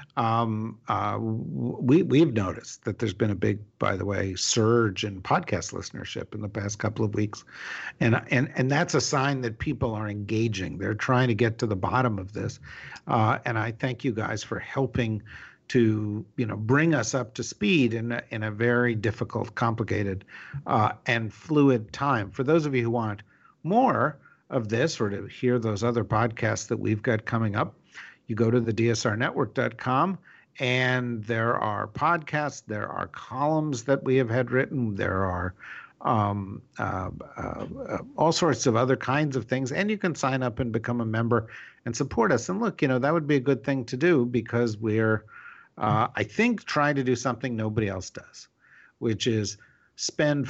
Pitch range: 110-135 Hz